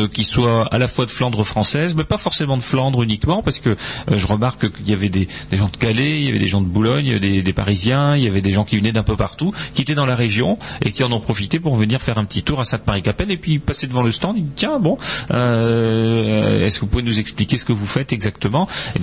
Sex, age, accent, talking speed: male, 40-59, French, 285 wpm